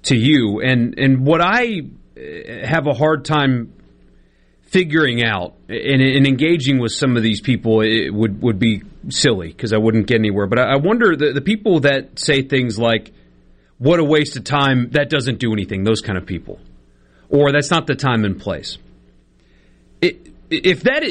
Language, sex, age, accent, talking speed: English, male, 40-59, American, 175 wpm